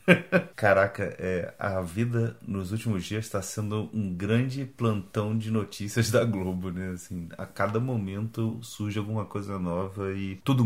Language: Portuguese